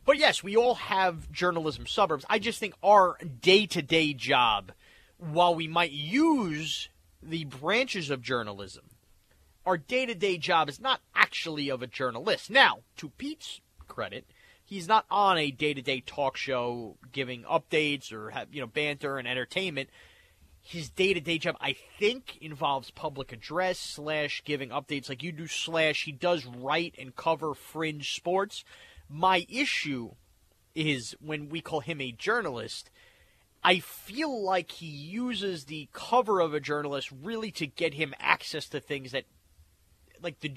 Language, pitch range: English, 135-175 Hz